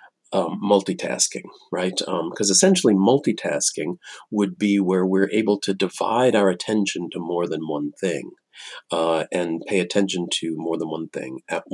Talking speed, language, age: 160 wpm, English, 40-59